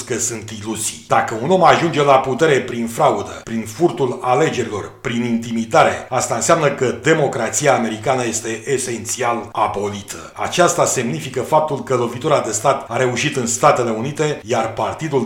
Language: Romanian